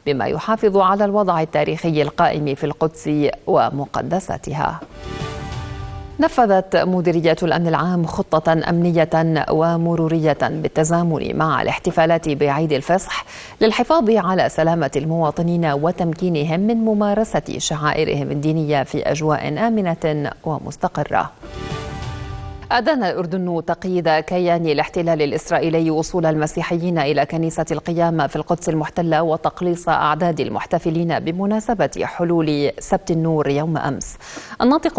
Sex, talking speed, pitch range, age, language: female, 100 wpm, 155-180 Hz, 40-59, Arabic